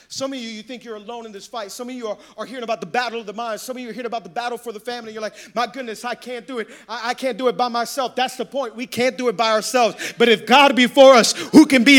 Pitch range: 225-270 Hz